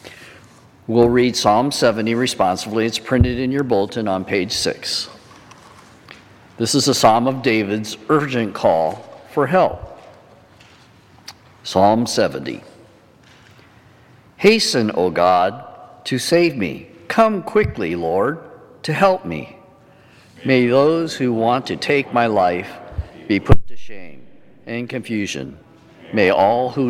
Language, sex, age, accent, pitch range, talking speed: English, male, 50-69, American, 105-135 Hz, 120 wpm